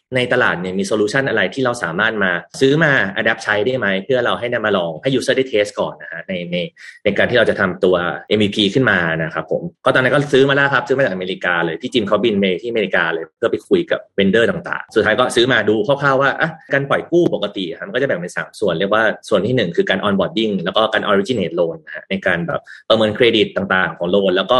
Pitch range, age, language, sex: 100-140 Hz, 30-49, Thai, male